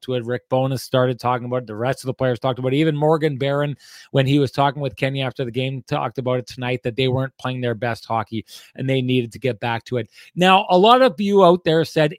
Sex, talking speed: male, 270 wpm